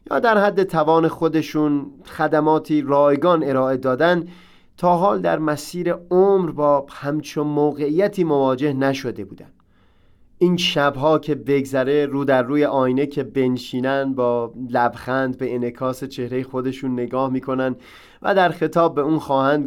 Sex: male